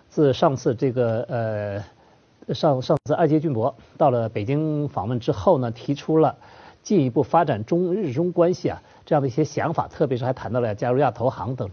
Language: Chinese